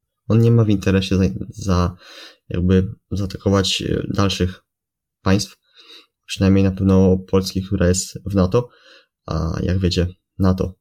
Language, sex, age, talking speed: Polish, male, 20-39, 130 wpm